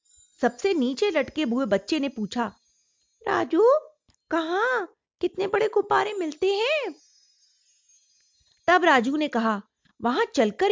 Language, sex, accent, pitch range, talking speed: Hindi, female, native, 215-325 Hz, 110 wpm